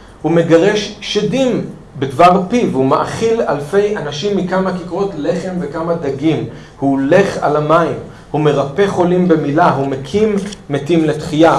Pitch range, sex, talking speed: 140-185 Hz, male, 135 wpm